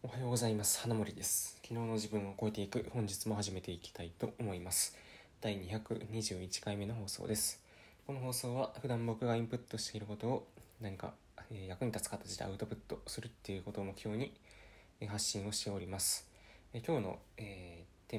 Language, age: Japanese, 20-39